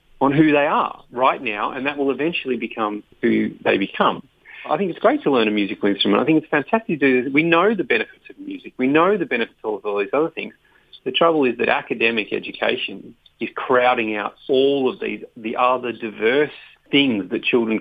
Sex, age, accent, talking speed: male, 40-59, Australian, 210 wpm